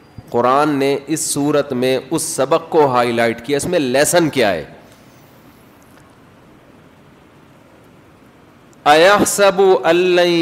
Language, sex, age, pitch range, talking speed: Urdu, male, 40-59, 130-170 Hz, 100 wpm